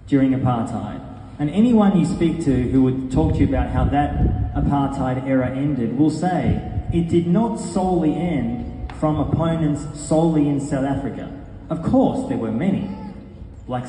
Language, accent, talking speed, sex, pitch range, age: English, Australian, 160 wpm, male, 120-155 Hz, 30-49